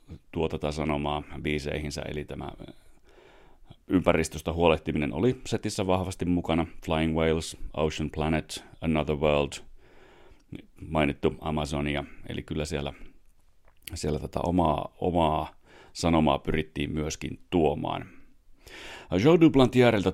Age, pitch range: 40-59, 75-90 Hz